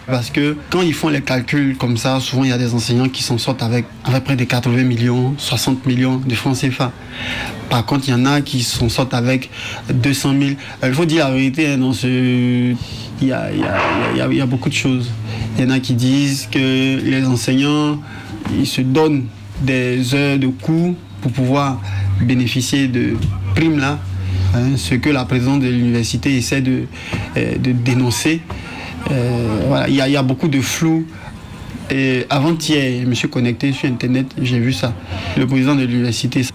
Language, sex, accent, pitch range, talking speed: French, male, French, 120-140 Hz, 180 wpm